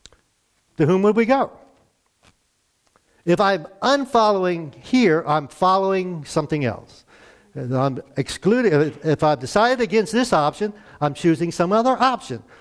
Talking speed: 130 wpm